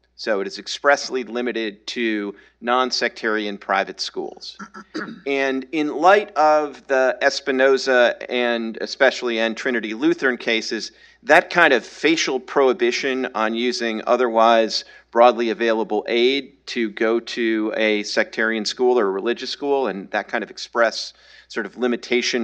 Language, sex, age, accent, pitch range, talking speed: English, male, 50-69, American, 110-130 Hz, 135 wpm